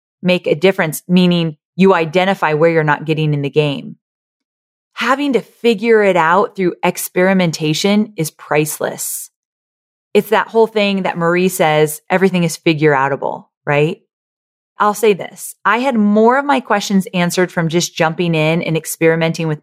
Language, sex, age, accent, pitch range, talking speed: English, female, 30-49, American, 160-220 Hz, 155 wpm